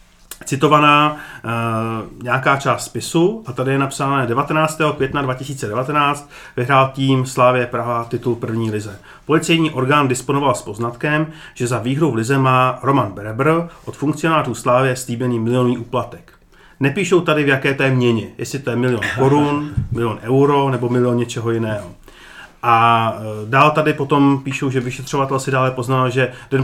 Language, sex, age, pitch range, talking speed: Czech, male, 40-59, 120-145 Hz, 150 wpm